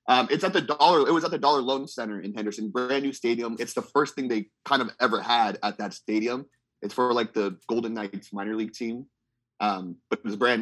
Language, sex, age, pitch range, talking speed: English, male, 30-49, 115-150 Hz, 245 wpm